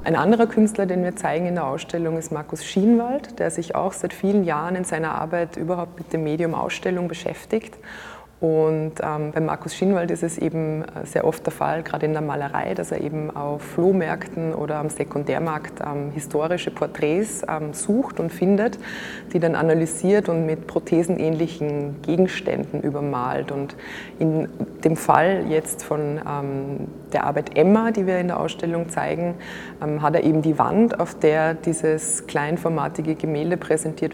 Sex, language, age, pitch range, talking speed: female, German, 20-39, 155-190 Hz, 165 wpm